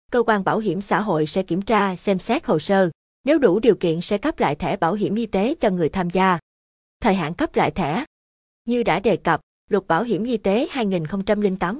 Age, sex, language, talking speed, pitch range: 20-39, female, Vietnamese, 225 wpm, 175-220 Hz